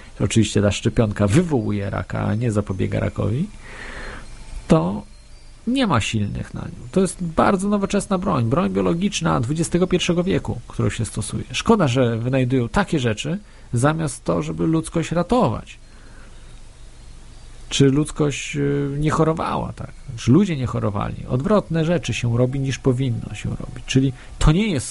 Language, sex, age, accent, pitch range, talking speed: Polish, male, 40-59, native, 115-160 Hz, 140 wpm